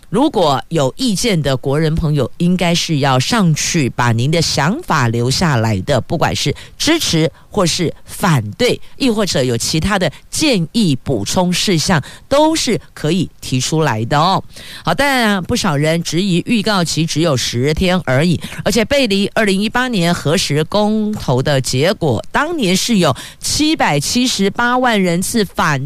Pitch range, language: 130-205 Hz, Chinese